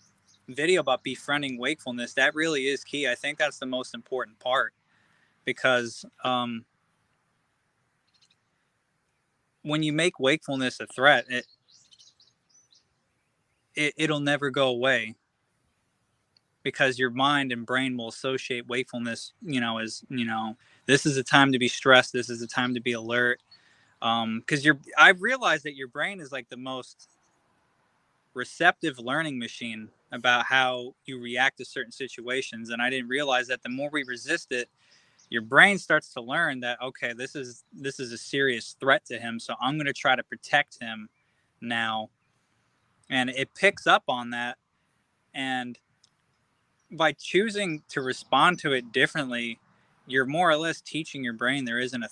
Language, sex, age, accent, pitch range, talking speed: English, male, 20-39, American, 120-145 Hz, 160 wpm